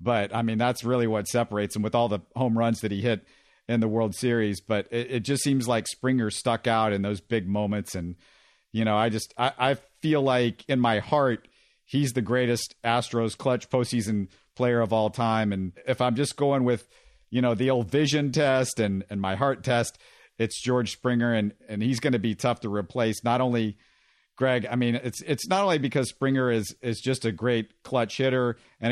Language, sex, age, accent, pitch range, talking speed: English, male, 50-69, American, 110-130 Hz, 220 wpm